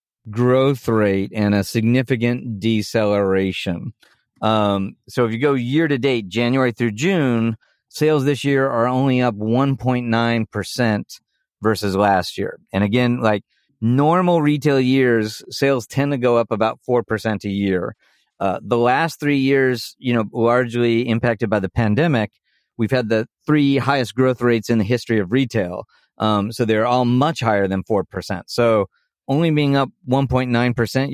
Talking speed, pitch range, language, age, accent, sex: 150 wpm, 110-135 Hz, English, 40-59, American, male